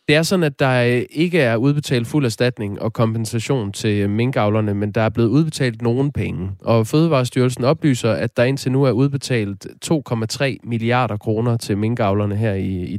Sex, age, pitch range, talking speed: male, 20-39, 105-130 Hz, 170 wpm